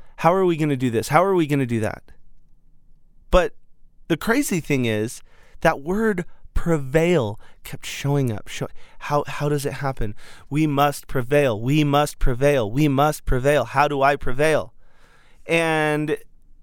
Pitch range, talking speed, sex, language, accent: 130-165 Hz, 160 wpm, male, English, American